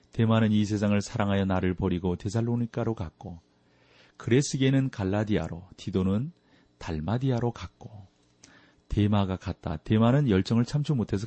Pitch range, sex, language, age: 90-130 Hz, male, Korean, 40-59